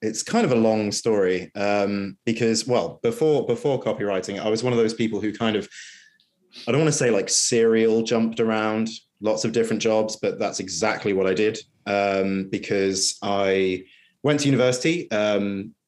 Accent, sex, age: British, male, 30-49